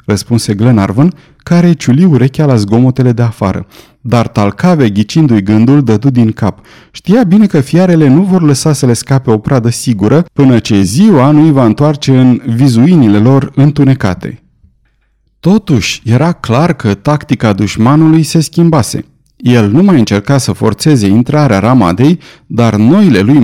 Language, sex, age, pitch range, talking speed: Romanian, male, 30-49, 110-150 Hz, 155 wpm